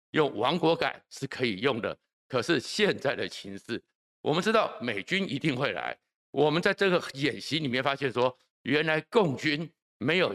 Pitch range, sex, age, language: 125-170 Hz, male, 60-79, Chinese